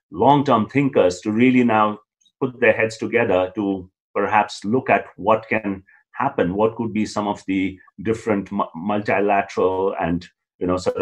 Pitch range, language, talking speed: 90-125 Hz, Hindi, 165 wpm